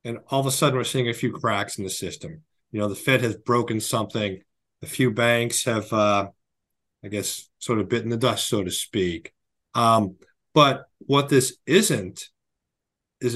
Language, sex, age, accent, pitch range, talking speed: English, male, 40-59, American, 105-130 Hz, 185 wpm